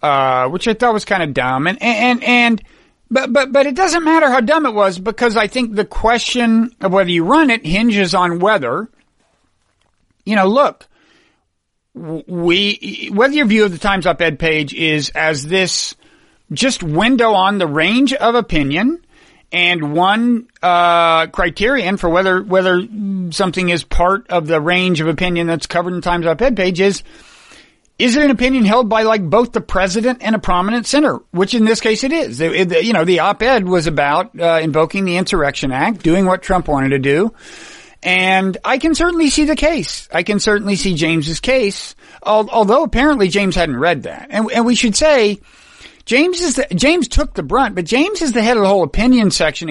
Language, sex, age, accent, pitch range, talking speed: English, male, 50-69, American, 175-245 Hz, 190 wpm